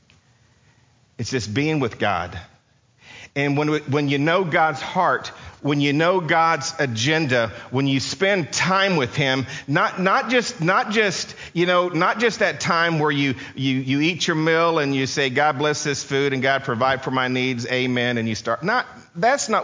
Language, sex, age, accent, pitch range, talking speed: English, male, 40-59, American, 145-210 Hz, 190 wpm